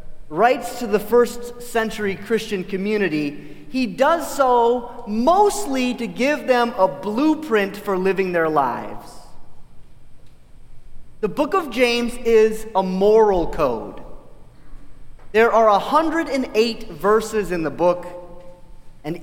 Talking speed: 110 wpm